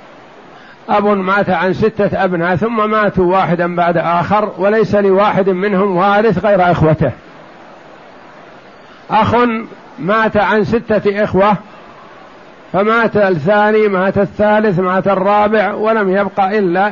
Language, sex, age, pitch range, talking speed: Arabic, male, 50-69, 190-220 Hz, 105 wpm